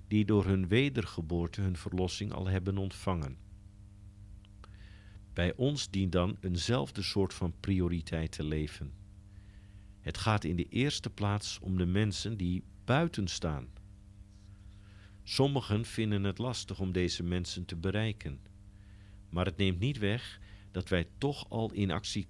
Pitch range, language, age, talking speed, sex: 95-105 Hz, Dutch, 50-69, 135 wpm, male